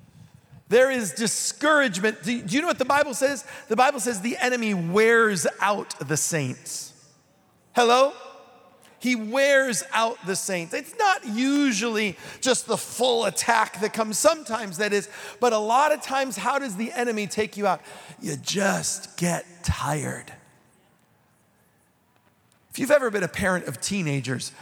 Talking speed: 150 wpm